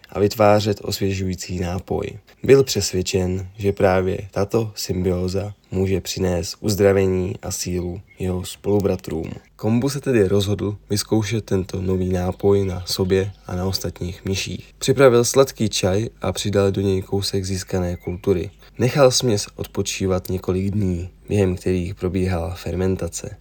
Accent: native